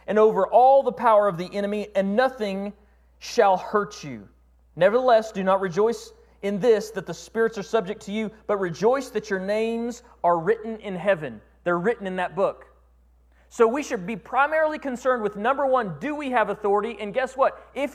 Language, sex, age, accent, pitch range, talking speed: English, male, 30-49, American, 195-270 Hz, 190 wpm